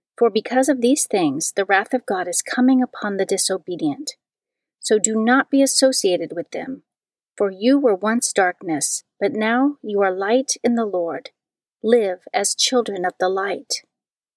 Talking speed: 165 wpm